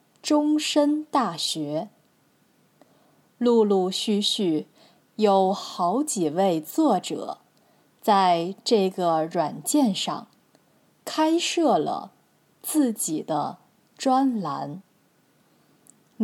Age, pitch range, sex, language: 20-39, 180-265 Hz, female, Chinese